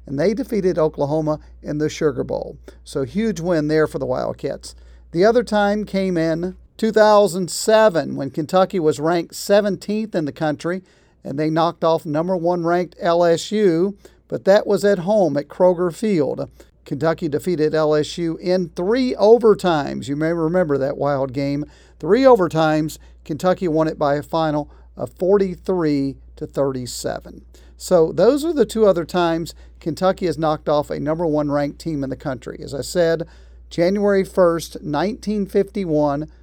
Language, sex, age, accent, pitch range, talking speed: English, male, 50-69, American, 145-180 Hz, 150 wpm